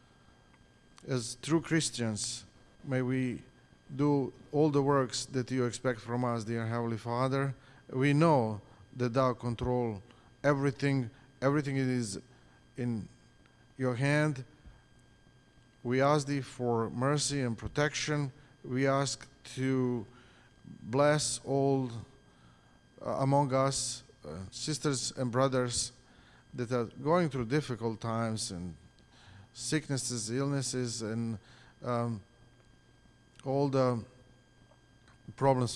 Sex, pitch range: male, 115-135 Hz